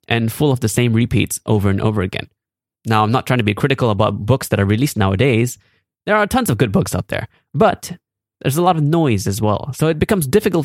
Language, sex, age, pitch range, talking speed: English, male, 20-39, 110-145 Hz, 240 wpm